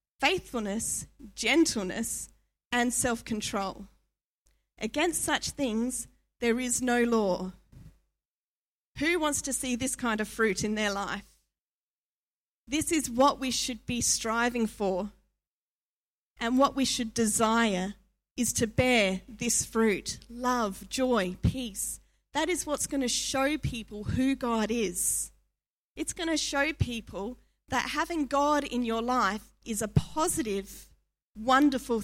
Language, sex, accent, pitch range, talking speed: English, female, Australian, 215-270 Hz, 125 wpm